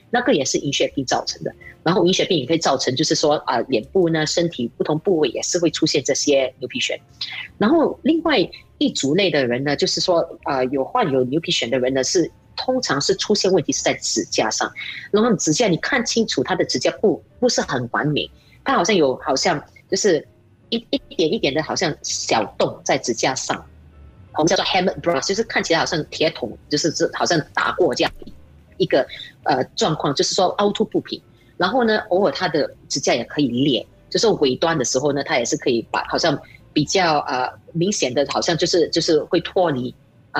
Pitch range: 145-210 Hz